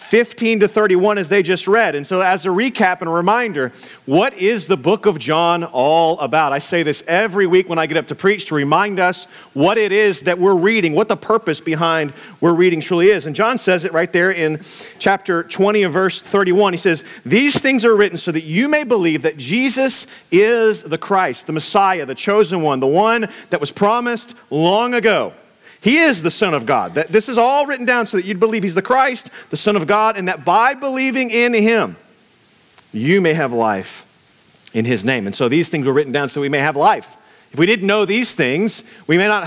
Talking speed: 225 wpm